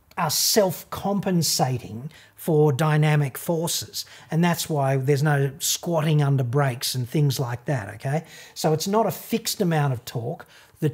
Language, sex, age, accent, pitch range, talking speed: English, male, 40-59, Australian, 140-165 Hz, 150 wpm